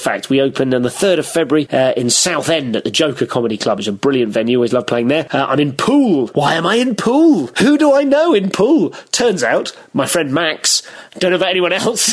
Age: 30-49